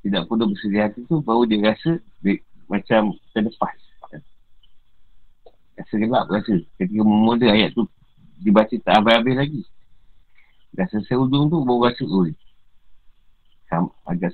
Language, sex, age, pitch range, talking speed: Malay, male, 50-69, 95-115 Hz, 120 wpm